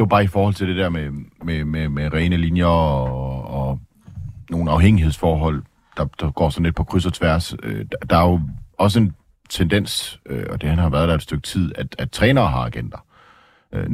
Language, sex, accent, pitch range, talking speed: Danish, male, native, 80-95 Hz, 215 wpm